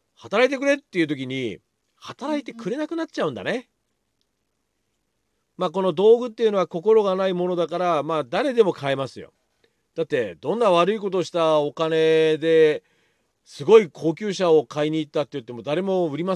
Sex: male